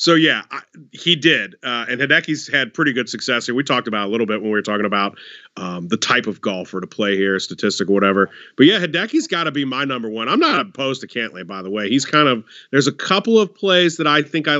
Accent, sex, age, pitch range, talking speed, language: American, male, 40-59, 120-160 Hz, 270 wpm, English